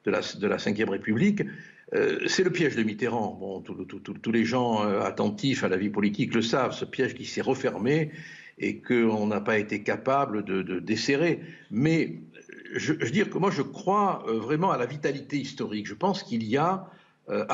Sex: male